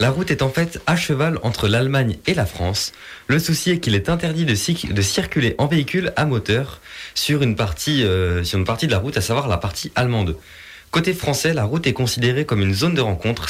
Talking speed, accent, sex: 220 wpm, French, male